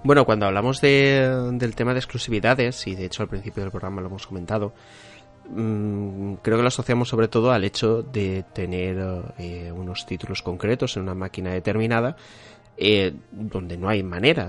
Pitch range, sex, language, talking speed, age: 90-115 Hz, male, Spanish, 165 wpm, 30-49